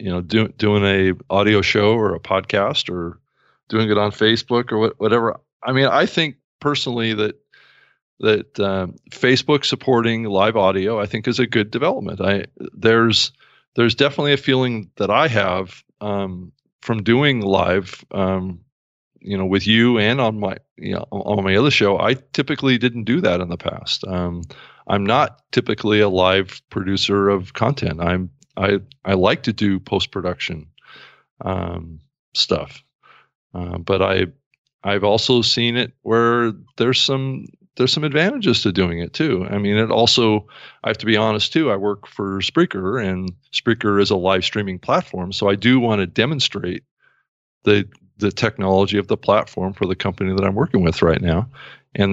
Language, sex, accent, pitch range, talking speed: English, male, American, 95-120 Hz, 175 wpm